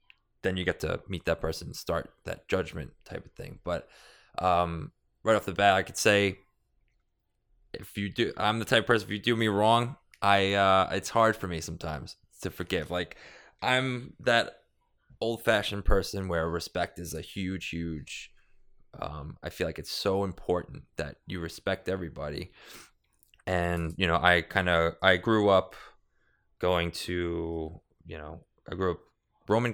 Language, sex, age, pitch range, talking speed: English, male, 20-39, 85-100 Hz, 170 wpm